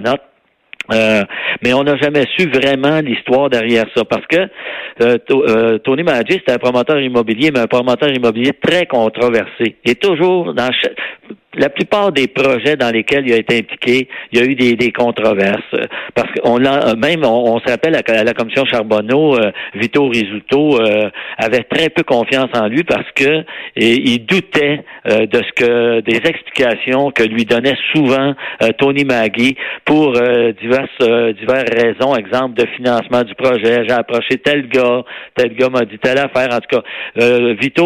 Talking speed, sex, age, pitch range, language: 185 wpm, male, 60-79, 115-145 Hz, French